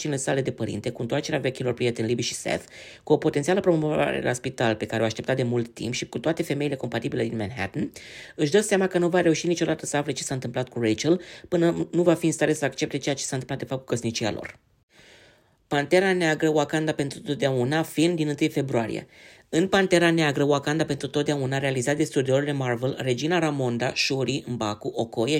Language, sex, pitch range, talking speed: Romanian, female, 125-160 Hz, 210 wpm